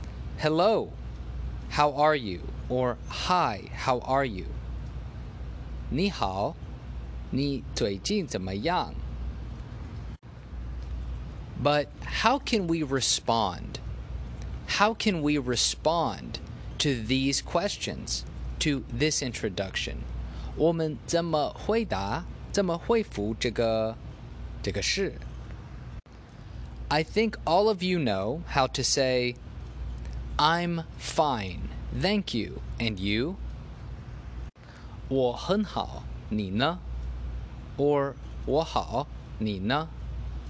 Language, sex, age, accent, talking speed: English, male, 30-49, American, 75 wpm